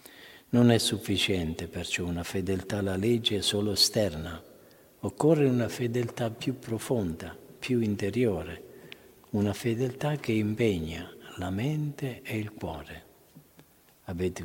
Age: 50-69